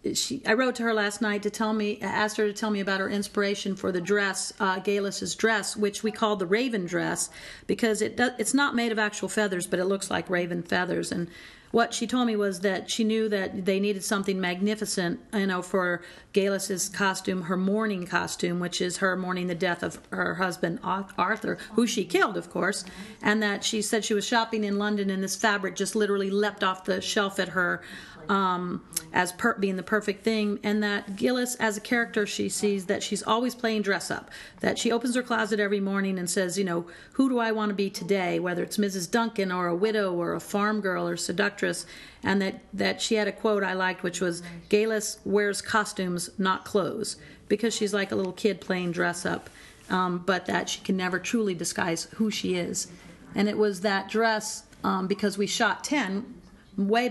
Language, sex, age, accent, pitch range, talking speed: English, female, 40-59, American, 185-215 Hz, 205 wpm